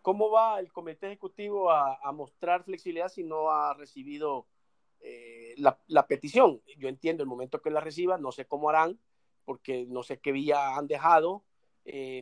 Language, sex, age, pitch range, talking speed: Spanish, male, 50-69, 135-180 Hz, 175 wpm